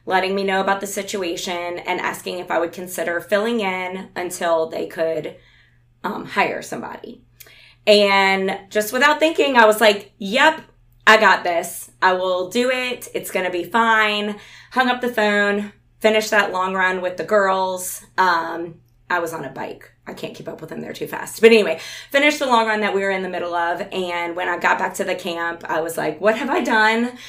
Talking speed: 205 wpm